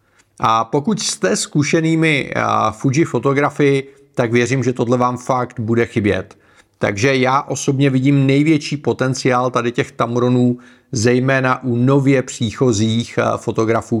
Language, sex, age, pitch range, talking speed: Czech, male, 40-59, 115-145 Hz, 125 wpm